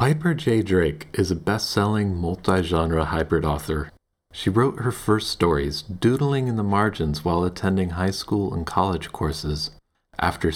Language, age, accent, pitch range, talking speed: English, 40-59, American, 80-105 Hz, 150 wpm